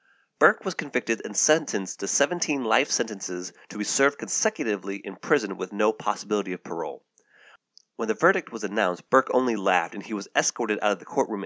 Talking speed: 190 wpm